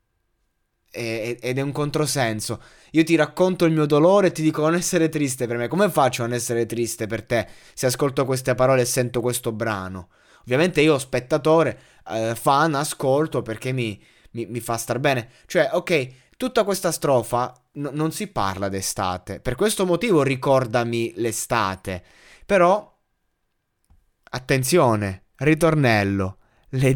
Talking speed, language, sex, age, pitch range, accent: 140 wpm, Italian, male, 20-39, 115-155 Hz, native